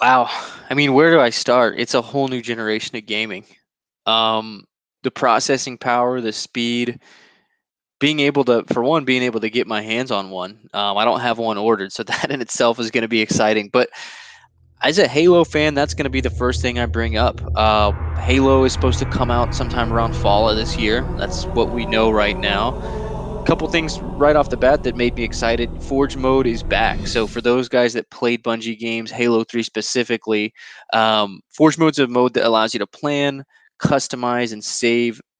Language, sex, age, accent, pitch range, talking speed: English, male, 20-39, American, 110-130 Hz, 205 wpm